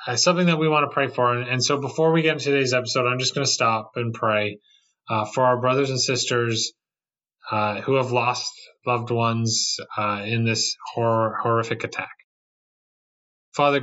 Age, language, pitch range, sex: 30-49, English, 115-130 Hz, male